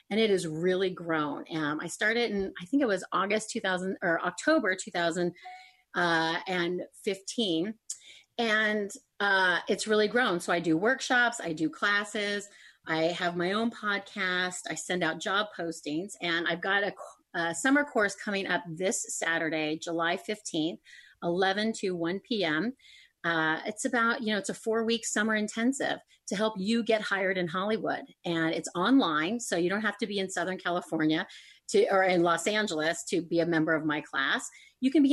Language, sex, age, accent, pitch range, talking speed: English, female, 30-49, American, 170-220 Hz, 175 wpm